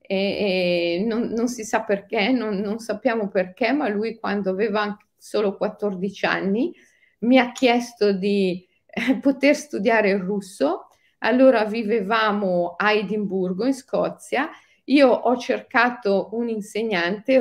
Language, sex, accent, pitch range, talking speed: Italian, female, native, 195-245 Hz, 115 wpm